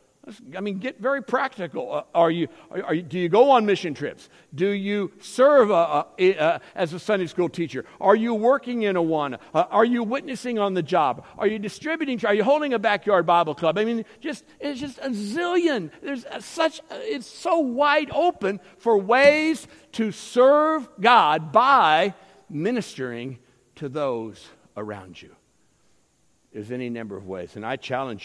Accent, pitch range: American, 140-220 Hz